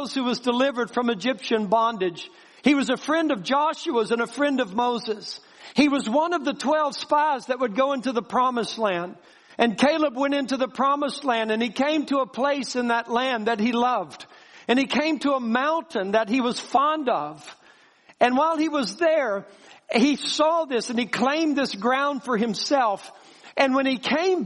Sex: male